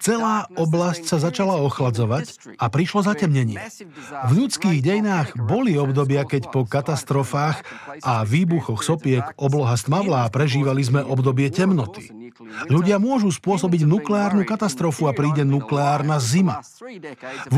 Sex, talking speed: male, 125 wpm